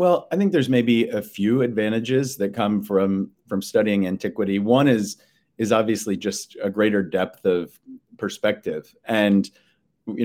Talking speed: 150 wpm